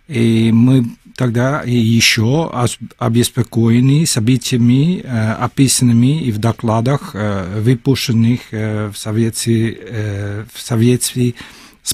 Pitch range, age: 110-135 Hz, 50-69